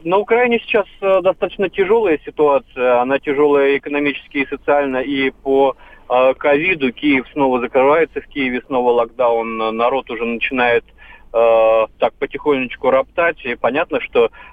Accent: native